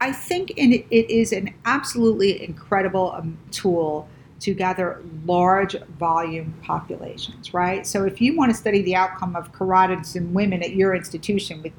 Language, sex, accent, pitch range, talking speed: English, female, American, 165-200 Hz, 160 wpm